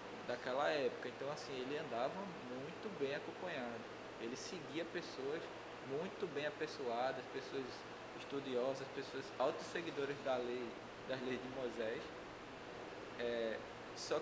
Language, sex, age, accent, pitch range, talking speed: Portuguese, male, 20-39, Brazilian, 130-170 Hz, 110 wpm